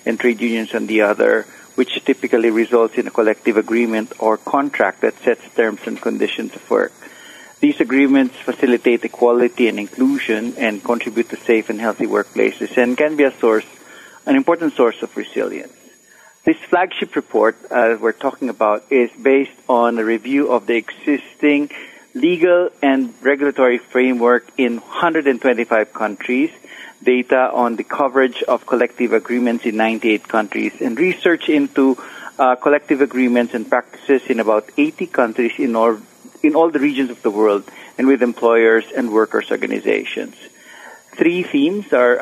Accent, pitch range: Filipino, 115-140 Hz